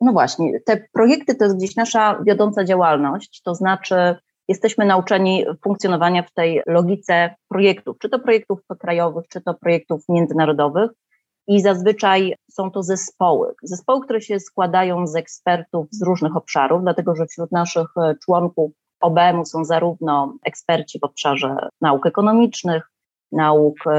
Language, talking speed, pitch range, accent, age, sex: Polish, 140 wpm, 165-210 Hz, native, 30-49, female